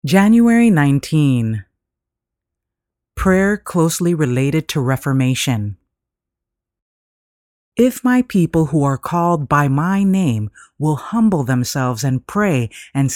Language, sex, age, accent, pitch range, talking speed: English, female, 30-49, American, 130-180 Hz, 100 wpm